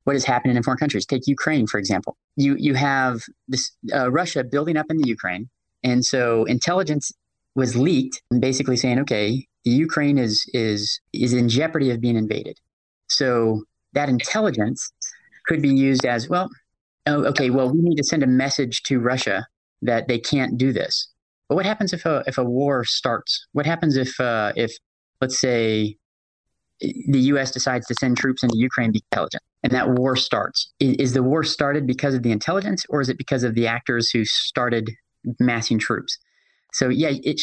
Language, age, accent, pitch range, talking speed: English, 30-49, American, 120-140 Hz, 190 wpm